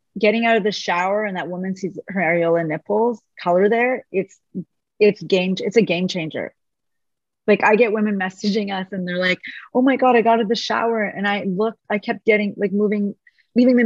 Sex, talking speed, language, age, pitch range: female, 210 wpm, English, 30-49, 180-225 Hz